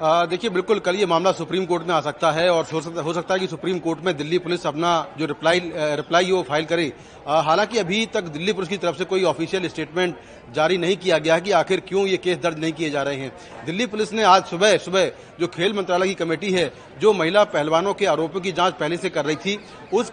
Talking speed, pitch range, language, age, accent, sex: 245 wpm, 170-215 Hz, Hindi, 40-59, native, male